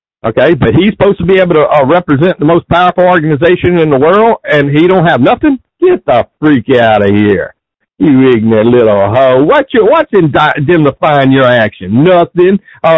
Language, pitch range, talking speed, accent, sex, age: English, 140-195 Hz, 205 wpm, American, male, 60-79